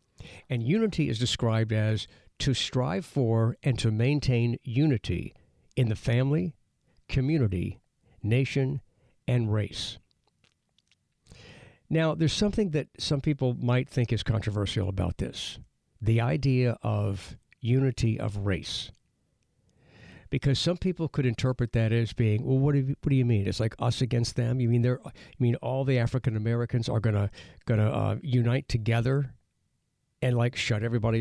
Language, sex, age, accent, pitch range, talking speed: English, male, 60-79, American, 110-135 Hz, 150 wpm